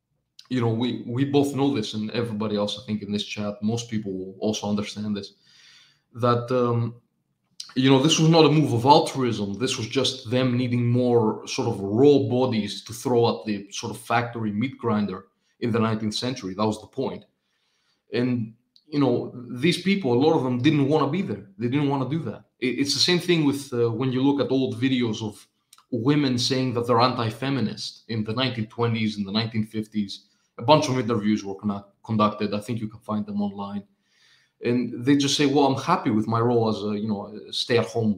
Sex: male